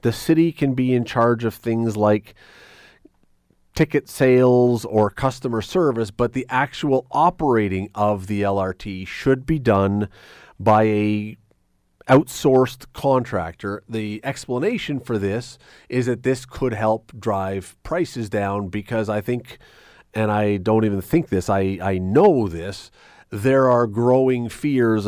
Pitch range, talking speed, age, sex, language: 105-130 Hz, 135 wpm, 40-59, male, English